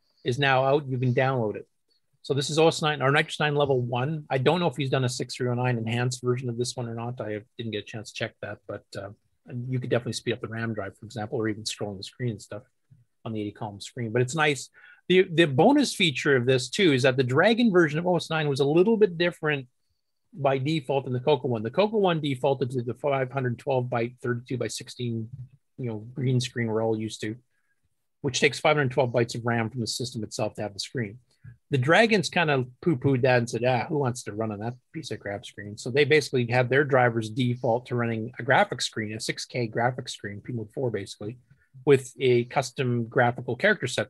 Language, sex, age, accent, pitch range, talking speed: English, male, 40-59, American, 115-140 Hz, 230 wpm